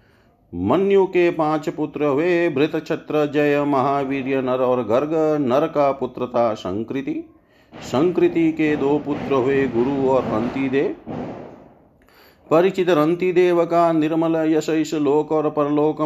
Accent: native